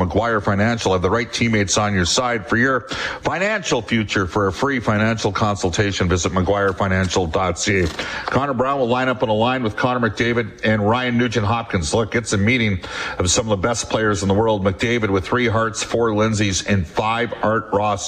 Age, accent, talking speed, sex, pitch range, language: 50-69, American, 190 wpm, male, 100-115 Hz, English